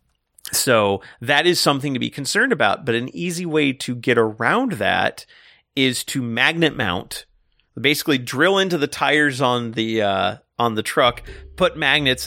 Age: 30-49